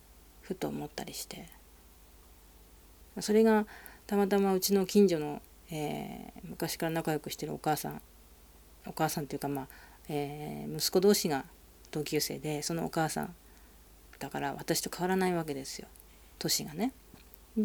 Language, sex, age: Japanese, female, 40-59